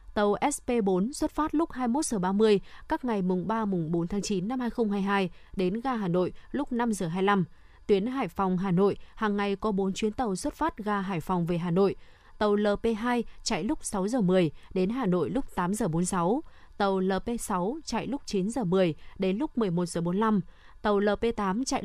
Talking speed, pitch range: 170 wpm, 190-235 Hz